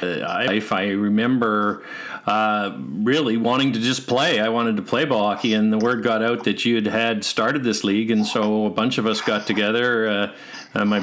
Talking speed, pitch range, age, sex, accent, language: 200 wpm, 105-120 Hz, 50-69, male, American, English